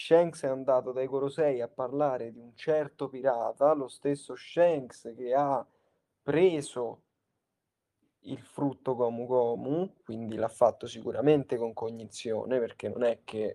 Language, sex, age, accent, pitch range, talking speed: Italian, male, 20-39, native, 115-140 Hz, 135 wpm